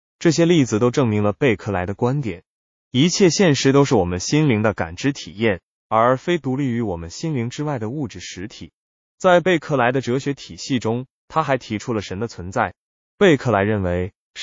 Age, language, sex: 20-39, Chinese, male